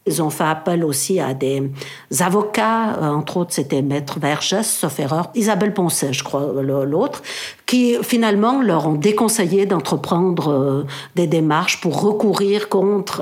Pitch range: 155-210 Hz